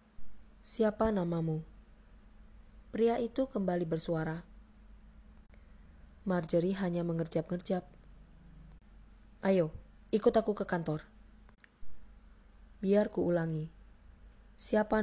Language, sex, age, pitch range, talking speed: Indonesian, female, 20-39, 160-190 Hz, 70 wpm